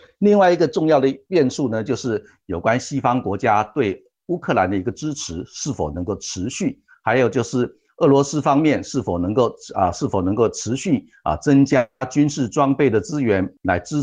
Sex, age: male, 50-69